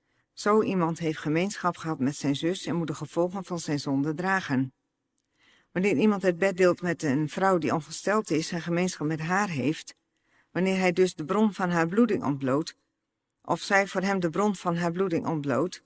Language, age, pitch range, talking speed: Dutch, 50-69, 150-190 Hz, 195 wpm